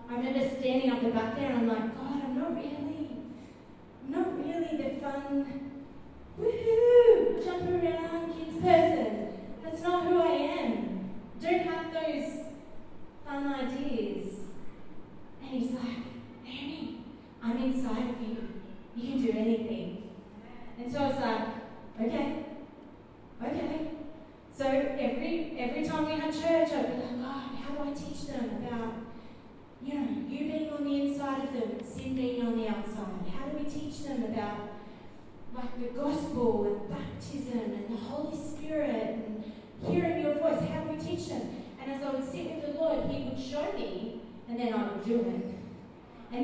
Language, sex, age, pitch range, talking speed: English, female, 30-49, 230-295 Hz, 165 wpm